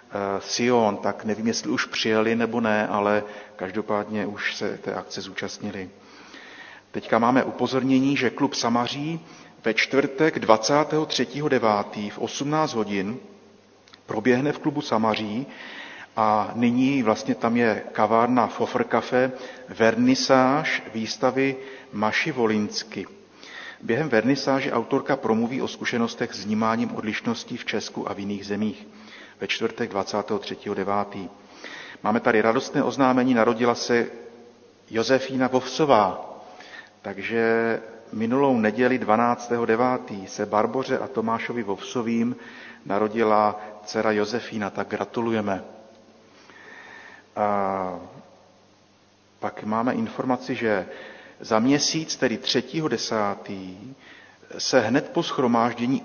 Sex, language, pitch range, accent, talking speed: male, Czech, 105-130 Hz, native, 105 wpm